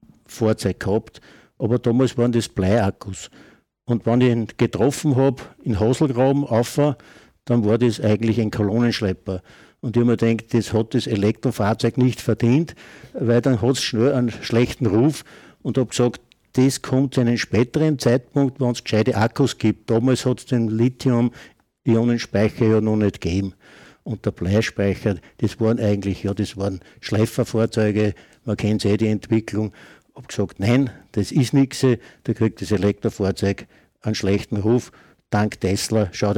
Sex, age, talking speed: male, 60-79, 160 wpm